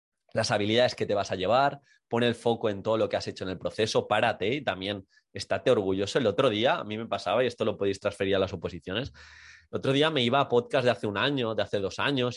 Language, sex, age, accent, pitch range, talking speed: Spanish, male, 20-39, Spanish, 100-130 Hz, 260 wpm